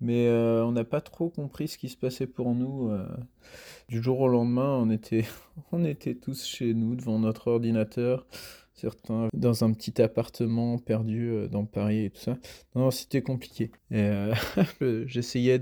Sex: male